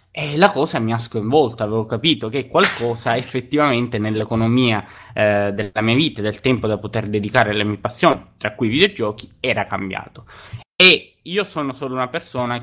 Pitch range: 105-135 Hz